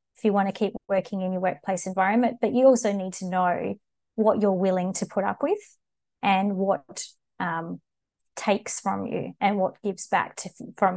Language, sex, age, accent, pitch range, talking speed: English, female, 20-39, Australian, 190-225 Hz, 185 wpm